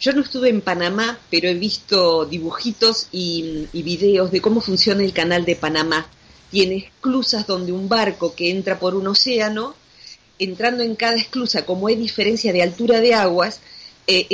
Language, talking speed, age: Spanish, 170 wpm, 40-59